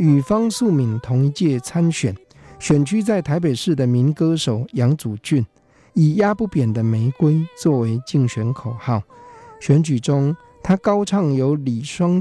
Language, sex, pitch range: Chinese, male, 115-155 Hz